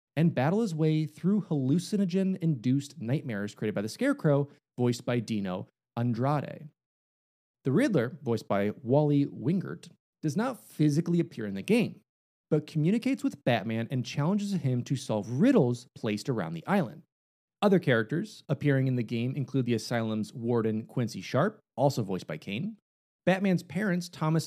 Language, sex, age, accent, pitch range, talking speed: English, male, 30-49, American, 125-180 Hz, 150 wpm